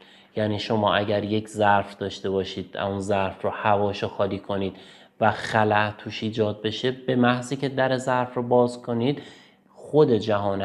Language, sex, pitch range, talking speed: Persian, male, 100-120 Hz, 160 wpm